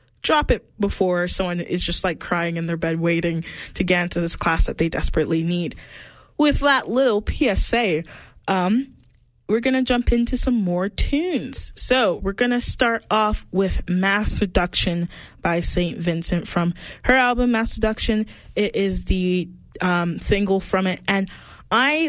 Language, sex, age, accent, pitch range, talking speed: English, female, 20-39, American, 175-205 Hz, 165 wpm